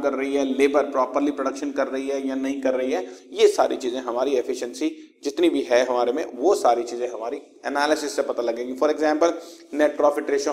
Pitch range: 135-180 Hz